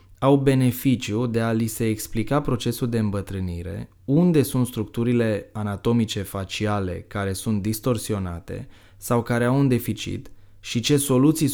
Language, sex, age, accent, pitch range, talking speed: Romanian, male, 20-39, native, 100-125 Hz, 135 wpm